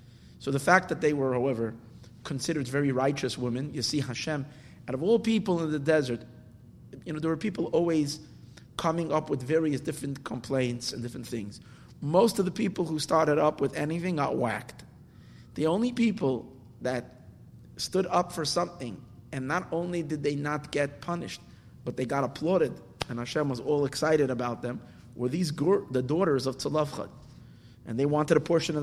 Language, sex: English, male